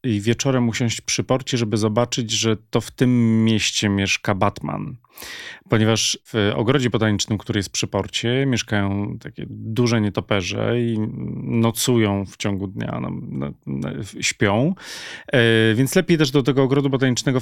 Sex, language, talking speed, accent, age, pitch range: male, Polish, 150 wpm, native, 30-49, 105-120 Hz